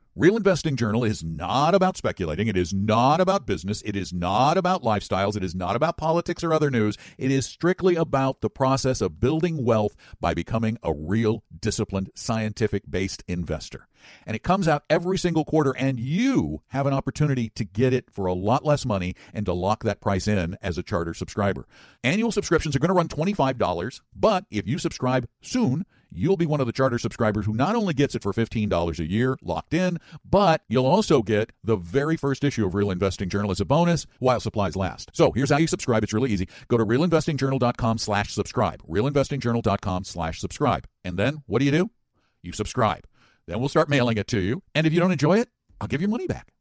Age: 50-69